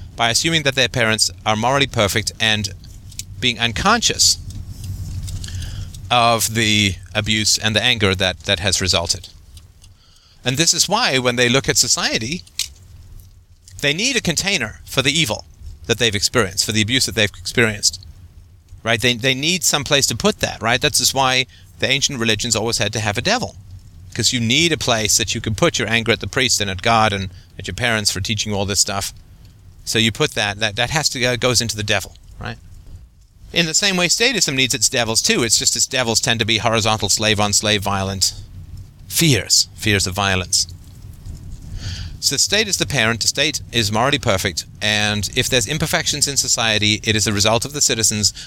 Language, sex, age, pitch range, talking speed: English, male, 40-59, 95-125 Hz, 190 wpm